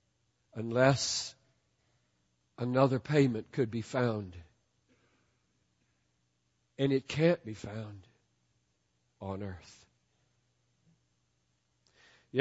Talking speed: 70 wpm